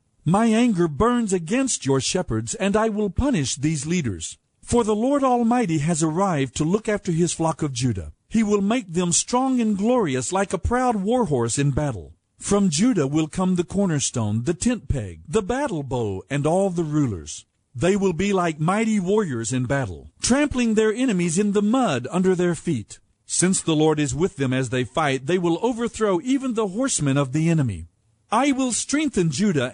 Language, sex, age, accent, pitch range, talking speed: English, male, 50-69, American, 135-220 Hz, 190 wpm